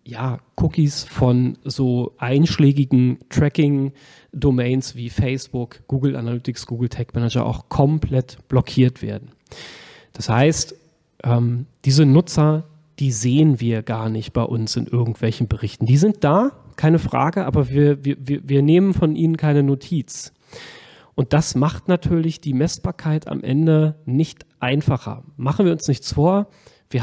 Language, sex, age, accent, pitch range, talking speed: German, male, 30-49, German, 125-155 Hz, 135 wpm